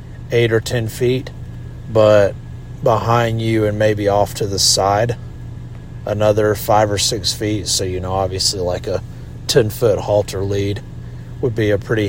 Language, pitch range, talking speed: English, 100-120 Hz, 155 wpm